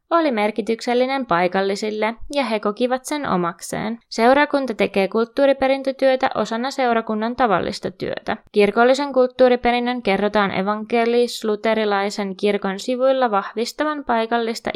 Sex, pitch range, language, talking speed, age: female, 205-250 Hz, Finnish, 95 wpm, 20-39